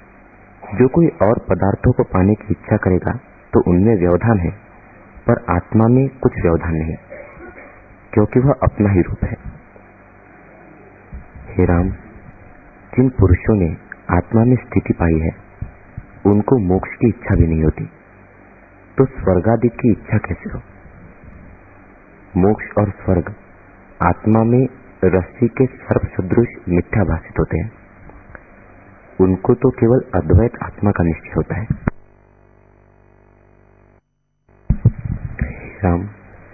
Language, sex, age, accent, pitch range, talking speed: Hindi, male, 50-69, native, 90-110 Hz, 115 wpm